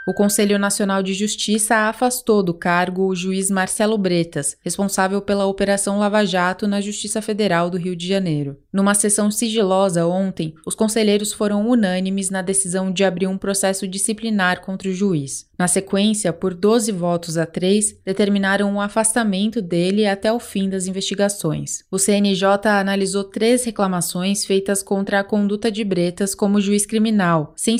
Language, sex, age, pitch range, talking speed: Portuguese, female, 20-39, 190-215 Hz, 160 wpm